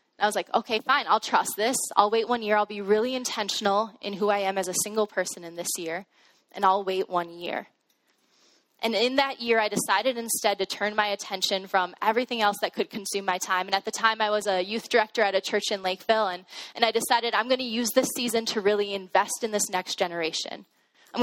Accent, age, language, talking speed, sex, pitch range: American, 10-29, English, 235 wpm, female, 190-230 Hz